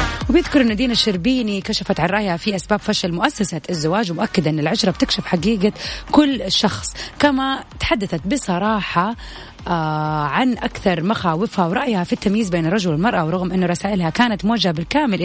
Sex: female